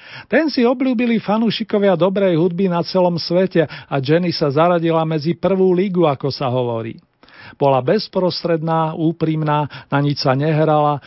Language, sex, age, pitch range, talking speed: Slovak, male, 40-59, 150-190 Hz, 140 wpm